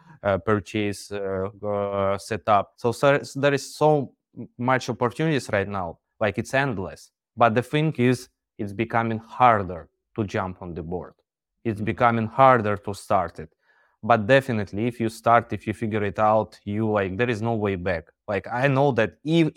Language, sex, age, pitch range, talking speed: English, male, 20-39, 105-135 Hz, 175 wpm